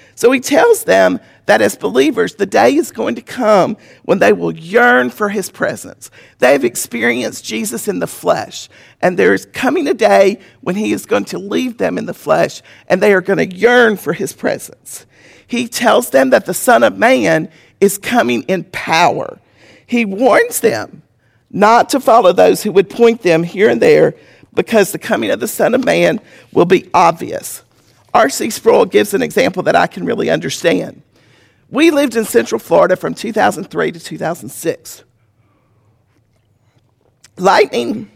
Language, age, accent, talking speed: English, 50-69, American, 170 wpm